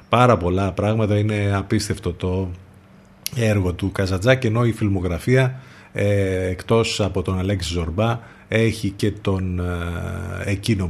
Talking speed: 120 wpm